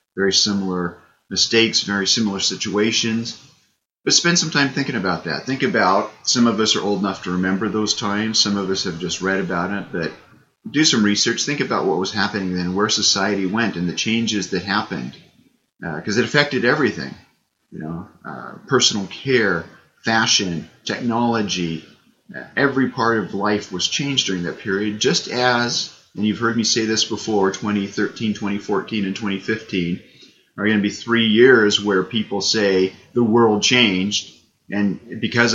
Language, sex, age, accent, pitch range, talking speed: English, male, 30-49, American, 100-115 Hz, 165 wpm